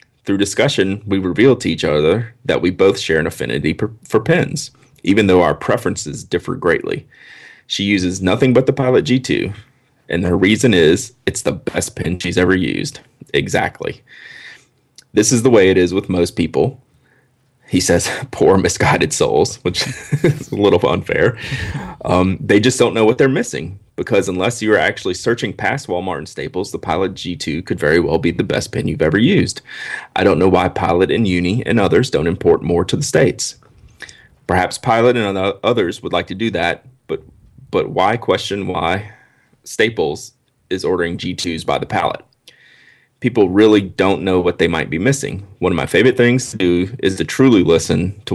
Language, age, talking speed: English, 30-49, 180 wpm